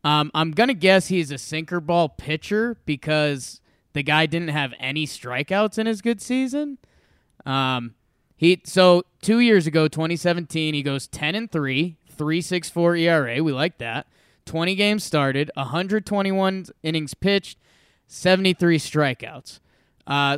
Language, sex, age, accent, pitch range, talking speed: English, male, 20-39, American, 150-190 Hz, 140 wpm